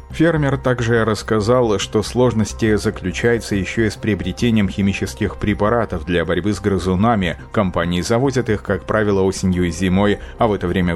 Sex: male